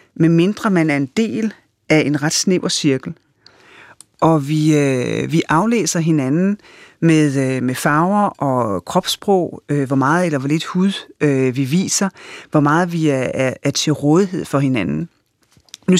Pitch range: 150-195 Hz